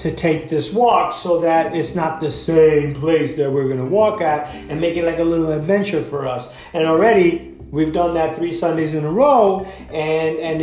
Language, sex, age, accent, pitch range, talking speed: English, male, 30-49, American, 155-180 Hz, 215 wpm